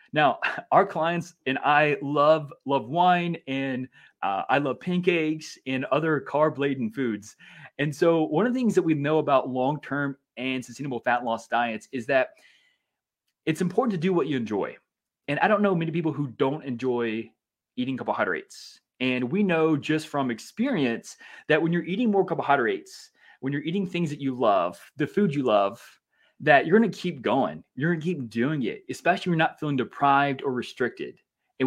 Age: 20-39